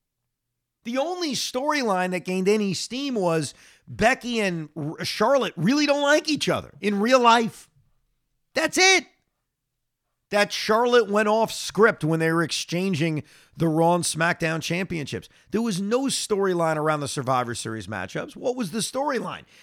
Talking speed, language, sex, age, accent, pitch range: 145 wpm, English, male, 40-59, American, 130-205 Hz